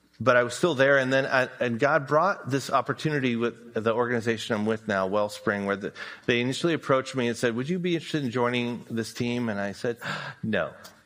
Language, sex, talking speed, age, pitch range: English, male, 215 wpm, 40-59, 105-125 Hz